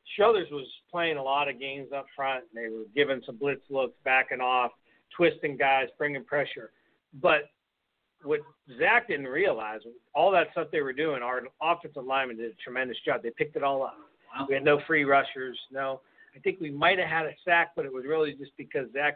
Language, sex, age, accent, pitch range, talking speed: English, male, 50-69, American, 120-145 Hz, 205 wpm